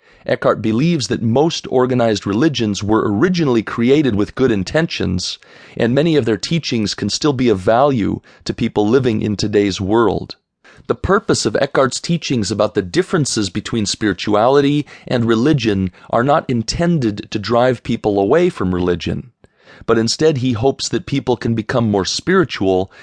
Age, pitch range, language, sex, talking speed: 40-59, 105-135 Hz, English, male, 155 wpm